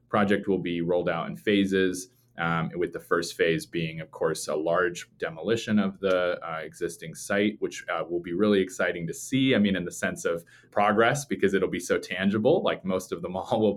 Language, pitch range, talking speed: English, 90-105 Hz, 215 wpm